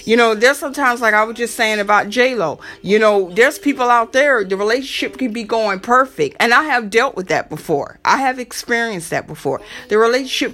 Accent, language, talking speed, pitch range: American, English, 210 wpm, 215-285 Hz